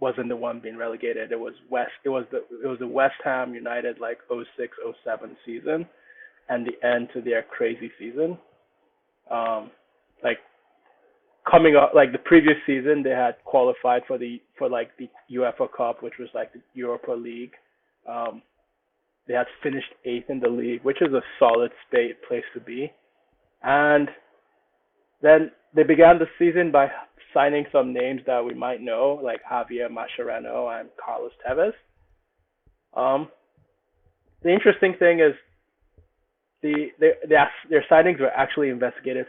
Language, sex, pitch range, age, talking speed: English, male, 120-165 Hz, 20-39, 155 wpm